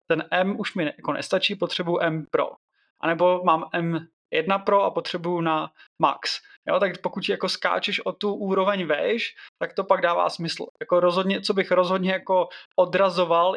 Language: Czech